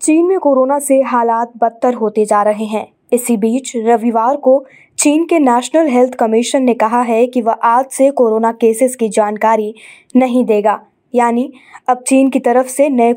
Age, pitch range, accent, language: 20-39, 230-270 Hz, native, Hindi